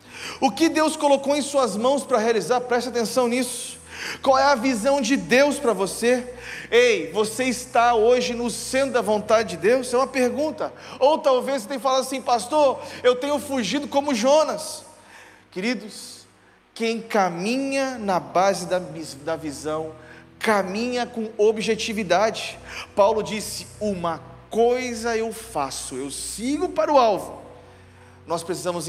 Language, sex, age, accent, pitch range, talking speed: Portuguese, male, 40-59, Brazilian, 195-255 Hz, 140 wpm